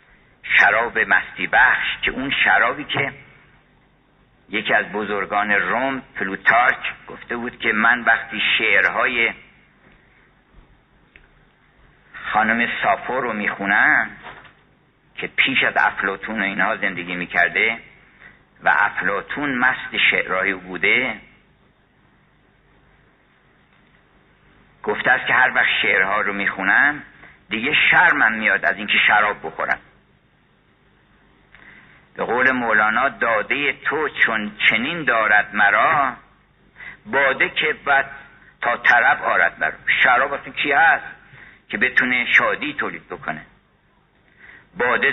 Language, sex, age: Persian, male, 50-69